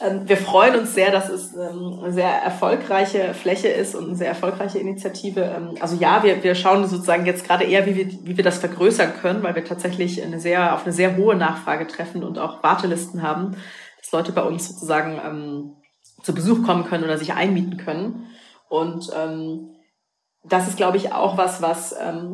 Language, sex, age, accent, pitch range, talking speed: German, female, 30-49, German, 170-195 Hz, 185 wpm